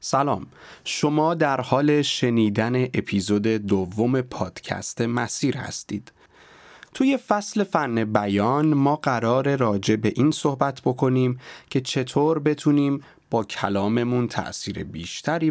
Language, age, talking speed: Persian, 30-49, 110 wpm